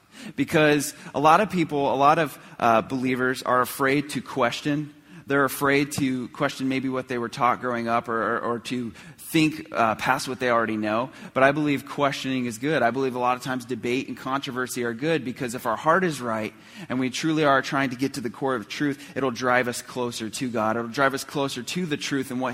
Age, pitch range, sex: 30-49, 115-150 Hz, male